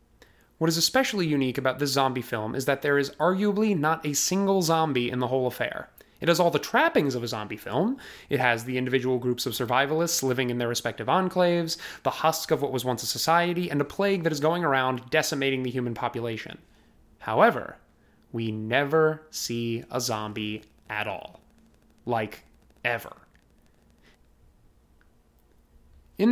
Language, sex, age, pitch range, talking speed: English, male, 20-39, 120-155 Hz, 165 wpm